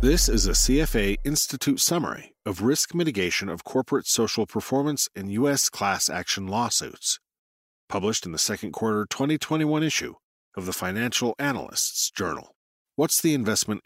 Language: English